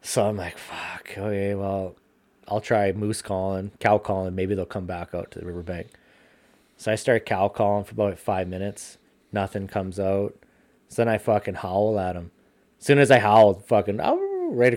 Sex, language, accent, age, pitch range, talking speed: male, English, American, 20-39, 95-110 Hz, 190 wpm